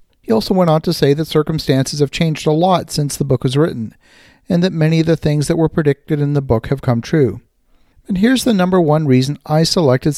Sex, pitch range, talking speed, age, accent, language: male, 135-170 Hz, 235 wpm, 50-69, American, English